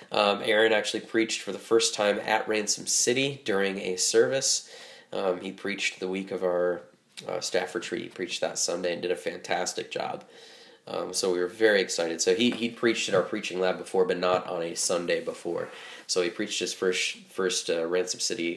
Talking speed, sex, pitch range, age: 205 wpm, male, 90-120 Hz, 20-39